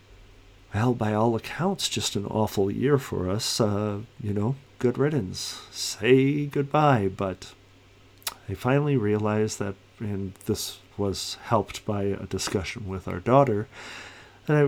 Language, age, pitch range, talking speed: English, 50-69, 95-120 Hz, 135 wpm